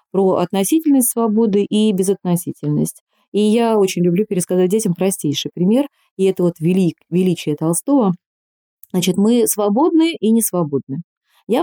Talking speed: 130 wpm